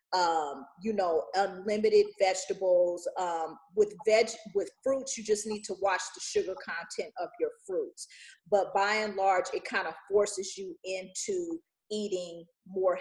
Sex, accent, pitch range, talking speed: female, American, 205-310 Hz, 150 wpm